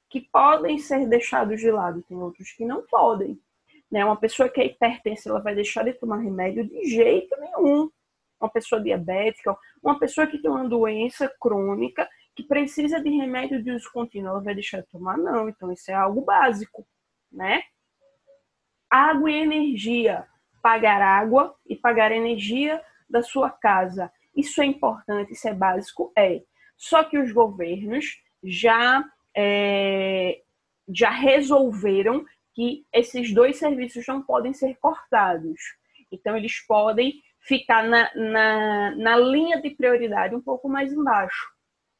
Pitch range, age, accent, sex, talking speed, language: 205-275 Hz, 20-39, Brazilian, female, 145 wpm, Portuguese